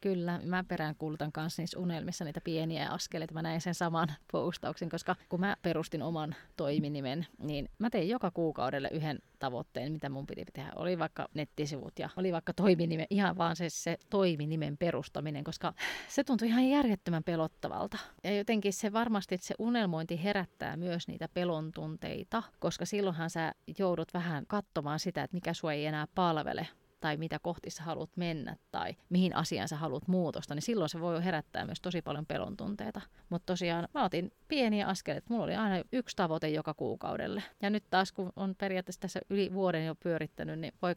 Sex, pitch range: female, 160-195 Hz